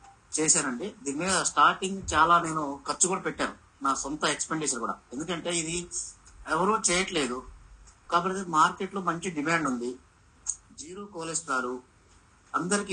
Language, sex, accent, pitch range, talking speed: Telugu, male, native, 140-185 Hz, 120 wpm